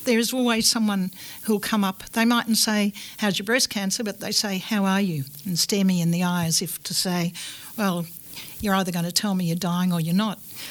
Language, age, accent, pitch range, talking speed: English, 60-79, Australian, 185-225 Hz, 230 wpm